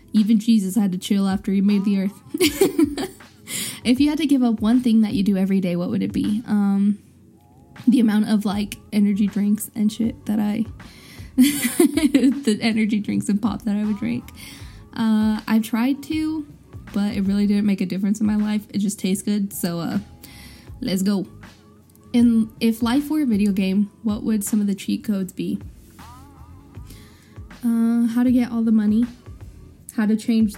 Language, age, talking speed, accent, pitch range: English, 10-29, 185 wpm, American, 205-250 Hz